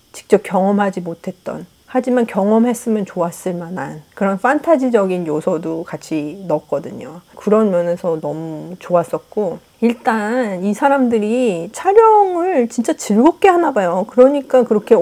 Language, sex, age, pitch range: Korean, female, 40-59, 185-255 Hz